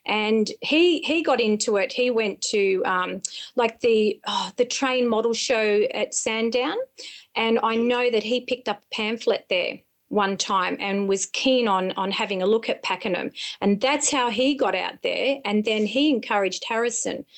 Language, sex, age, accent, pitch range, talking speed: English, female, 30-49, Australian, 210-270 Hz, 185 wpm